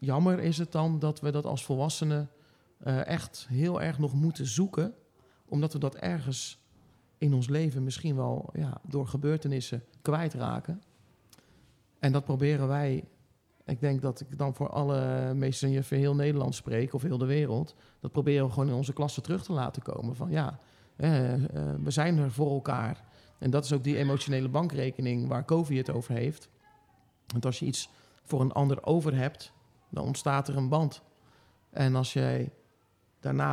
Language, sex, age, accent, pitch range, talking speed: Dutch, male, 40-59, Dutch, 125-150 Hz, 180 wpm